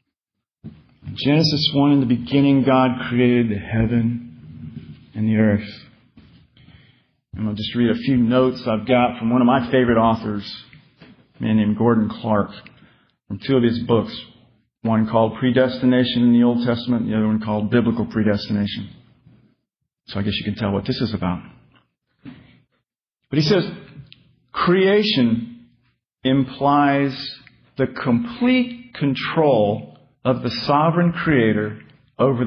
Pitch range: 110-140 Hz